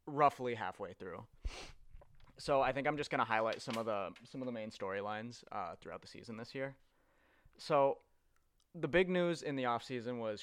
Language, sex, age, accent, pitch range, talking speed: English, male, 20-39, American, 105-130 Hz, 195 wpm